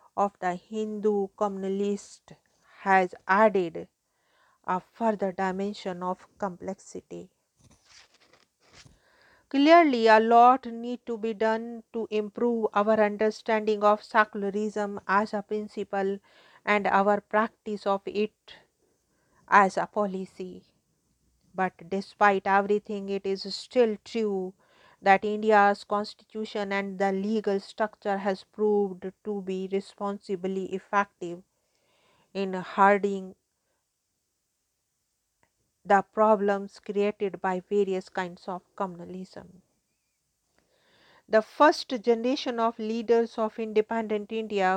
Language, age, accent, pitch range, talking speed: English, 50-69, Indian, 195-215 Hz, 100 wpm